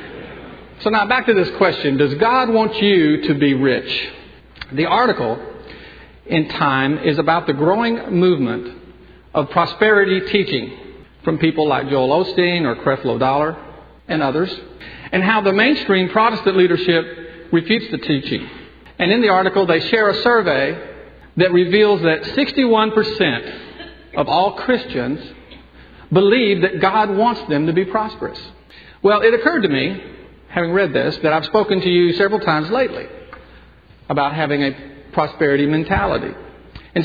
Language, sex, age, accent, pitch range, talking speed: English, male, 50-69, American, 150-210 Hz, 145 wpm